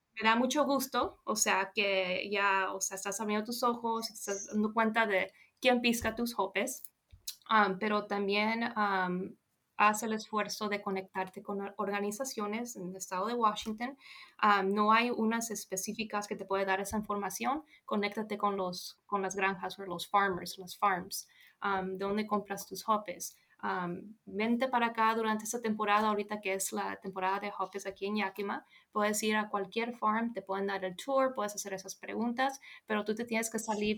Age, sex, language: 20-39, female, English